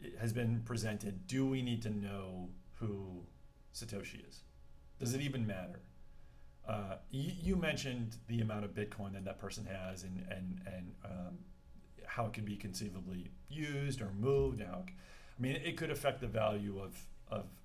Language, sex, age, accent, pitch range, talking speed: English, male, 40-59, American, 90-115 Hz, 165 wpm